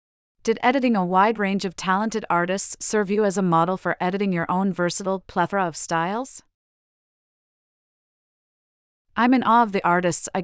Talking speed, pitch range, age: 160 wpm, 165-205 Hz, 40-59